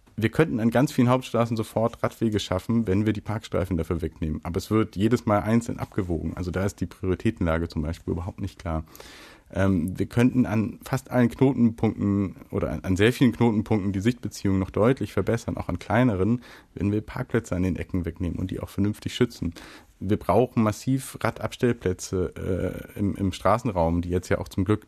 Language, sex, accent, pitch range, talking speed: German, male, German, 95-115 Hz, 190 wpm